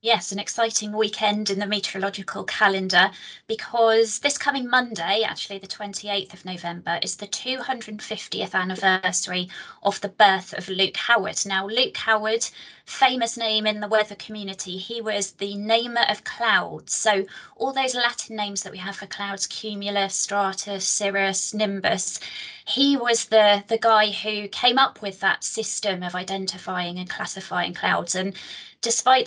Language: English